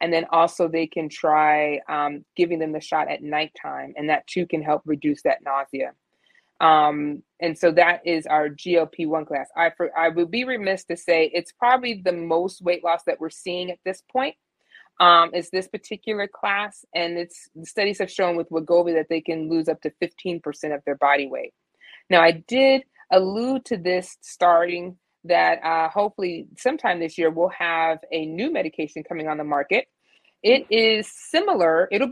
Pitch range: 160-185 Hz